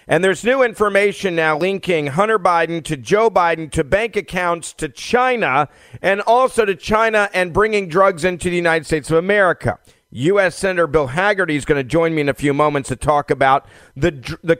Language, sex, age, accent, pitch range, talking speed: English, male, 40-59, American, 150-190 Hz, 195 wpm